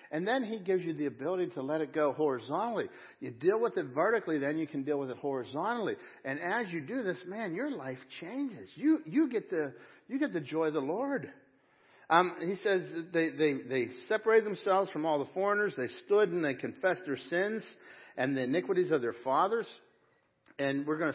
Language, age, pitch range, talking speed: English, 60-79, 130-185 Hz, 205 wpm